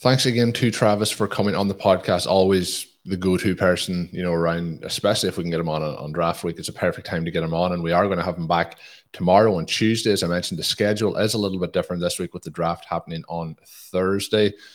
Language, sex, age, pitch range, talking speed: English, male, 20-39, 85-105 Hz, 255 wpm